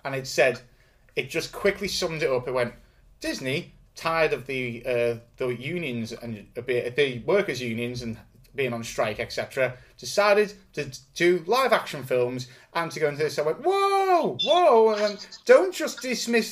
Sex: male